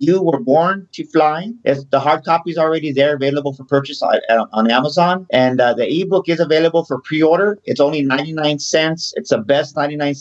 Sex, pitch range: male, 125-150 Hz